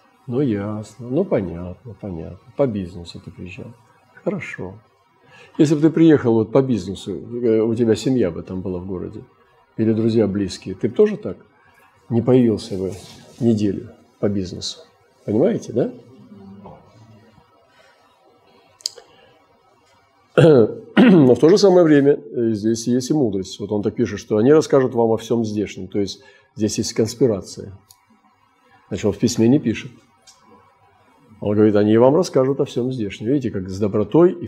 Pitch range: 100-130 Hz